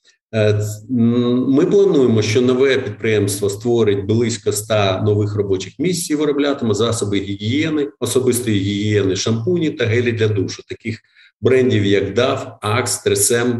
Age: 40-59